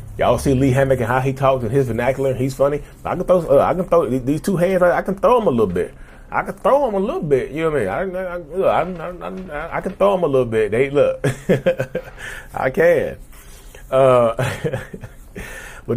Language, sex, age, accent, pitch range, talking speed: English, male, 30-49, American, 100-135 Hz, 235 wpm